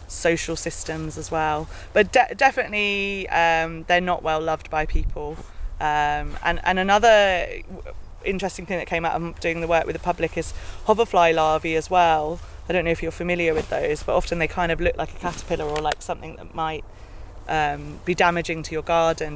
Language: English